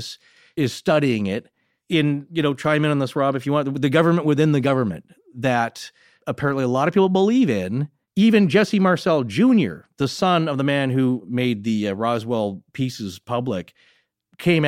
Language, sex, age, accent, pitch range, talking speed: English, male, 40-59, American, 120-165 Hz, 180 wpm